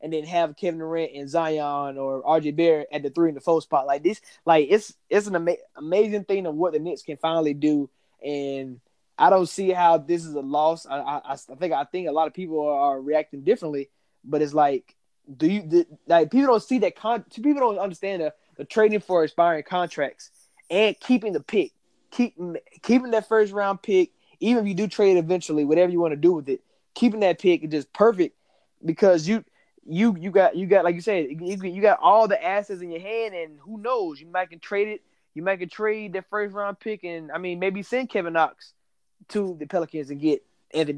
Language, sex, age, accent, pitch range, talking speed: English, male, 20-39, American, 160-210 Hz, 220 wpm